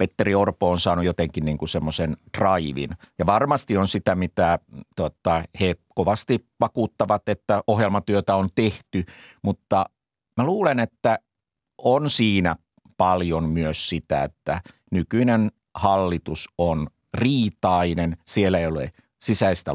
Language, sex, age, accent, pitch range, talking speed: Finnish, male, 50-69, native, 85-105 Hz, 110 wpm